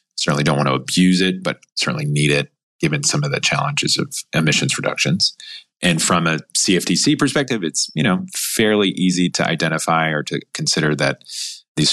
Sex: male